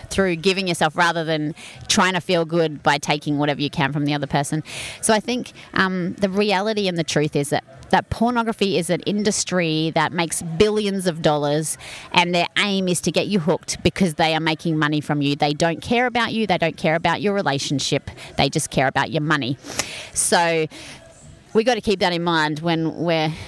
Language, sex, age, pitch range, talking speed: English, female, 30-49, 150-195 Hz, 205 wpm